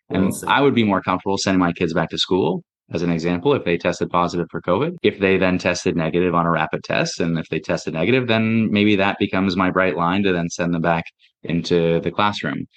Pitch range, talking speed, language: 90-110 Hz, 235 wpm, English